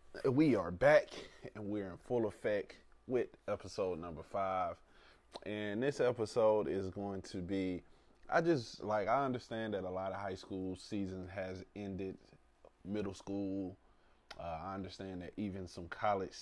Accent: American